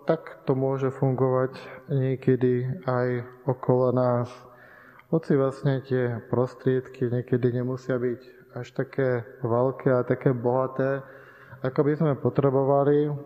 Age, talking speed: 20-39, 115 wpm